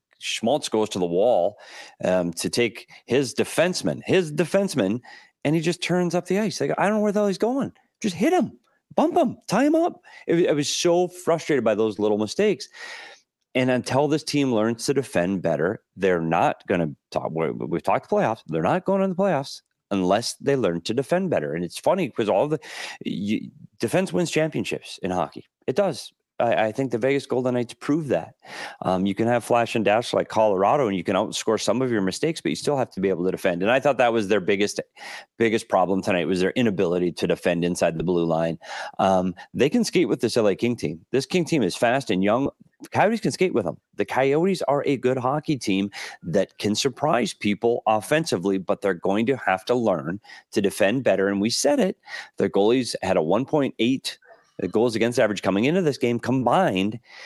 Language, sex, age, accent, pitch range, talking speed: English, male, 30-49, American, 105-160 Hz, 210 wpm